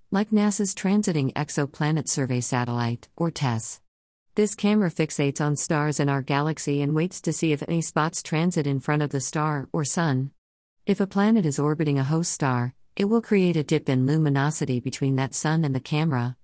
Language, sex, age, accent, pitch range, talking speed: English, female, 50-69, American, 130-165 Hz, 190 wpm